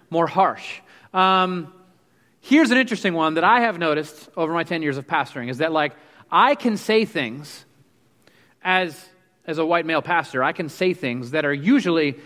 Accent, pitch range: American, 140-190 Hz